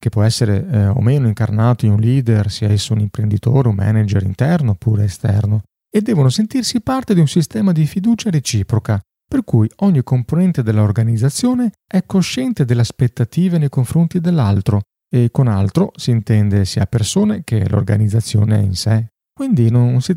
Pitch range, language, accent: 110-170 Hz, Italian, native